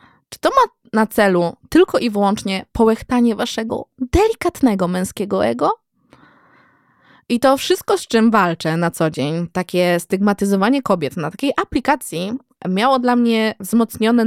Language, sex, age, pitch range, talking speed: Polish, female, 20-39, 175-245 Hz, 135 wpm